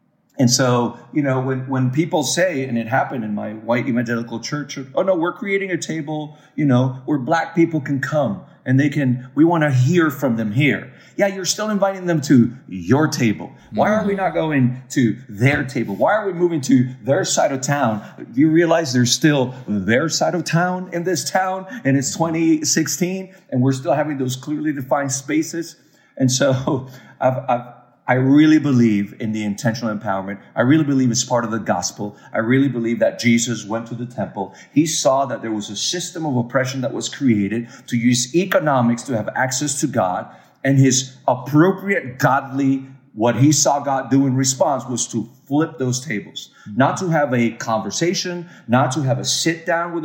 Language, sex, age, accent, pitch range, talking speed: English, male, 40-59, American, 120-160 Hz, 195 wpm